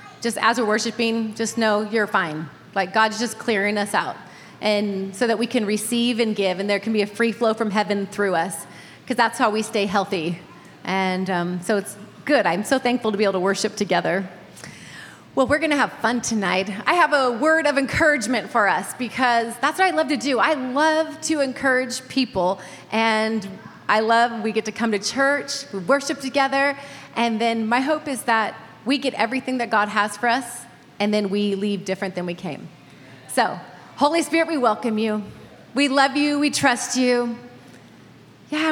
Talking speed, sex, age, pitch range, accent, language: 195 wpm, female, 30-49, 195-255 Hz, American, English